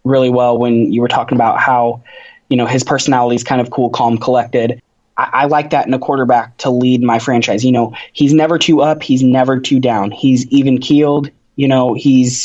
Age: 20-39